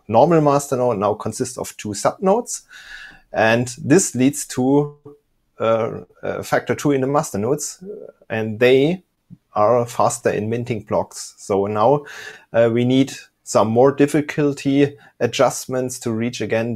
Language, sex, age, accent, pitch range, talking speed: English, male, 30-49, German, 105-130 Hz, 145 wpm